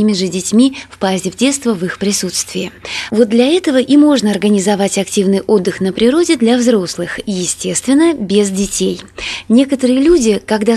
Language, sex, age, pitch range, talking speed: Russian, female, 20-39, 195-250 Hz, 145 wpm